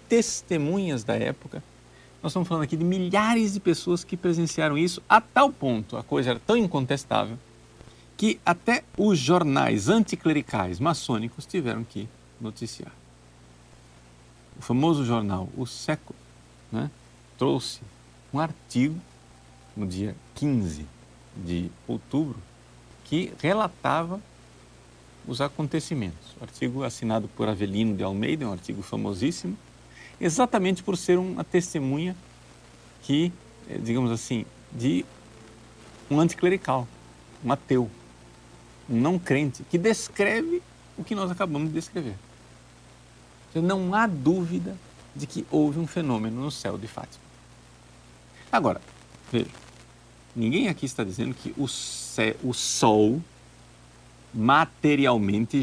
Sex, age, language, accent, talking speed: male, 50-69, Portuguese, Brazilian, 115 wpm